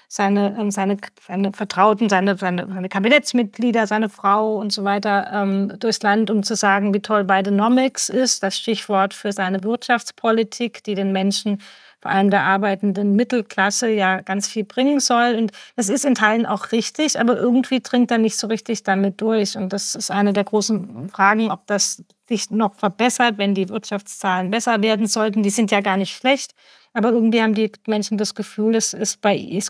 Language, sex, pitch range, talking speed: German, female, 195-225 Hz, 180 wpm